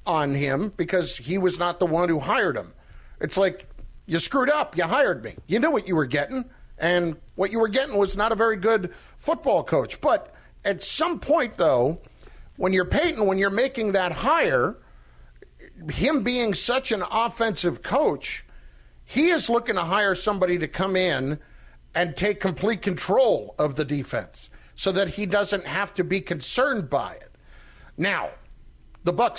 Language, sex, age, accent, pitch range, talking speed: English, male, 50-69, American, 150-200 Hz, 175 wpm